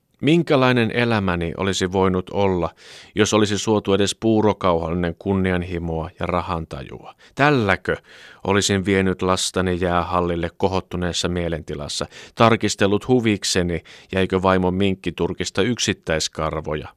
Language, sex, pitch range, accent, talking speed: Finnish, male, 85-115 Hz, native, 95 wpm